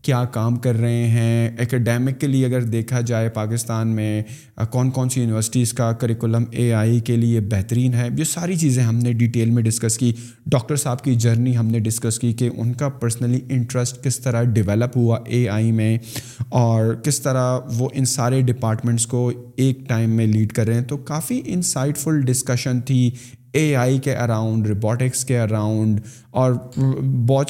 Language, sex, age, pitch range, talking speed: Urdu, male, 20-39, 115-135 Hz, 185 wpm